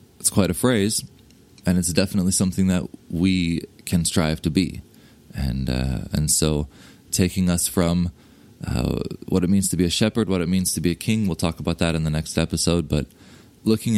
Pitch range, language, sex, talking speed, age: 75-95 Hz, English, male, 195 wpm, 20-39